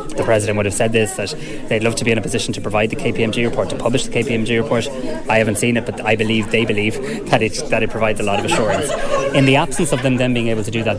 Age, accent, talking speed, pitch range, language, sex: 20-39, Irish, 290 wpm, 105-130 Hz, English, male